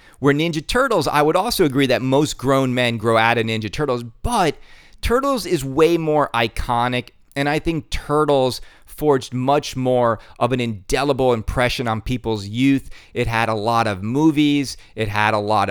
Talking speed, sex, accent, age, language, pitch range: 175 wpm, male, American, 40-59, English, 115-155 Hz